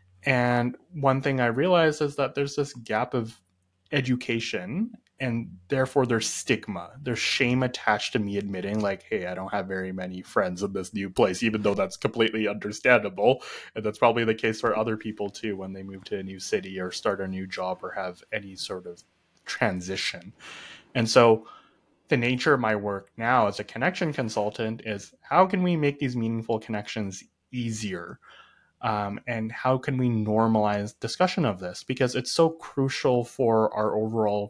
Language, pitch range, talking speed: English, 100-130 Hz, 180 wpm